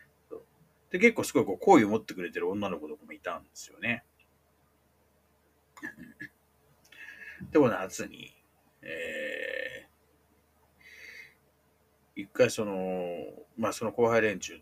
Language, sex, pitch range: Japanese, male, 75-100 Hz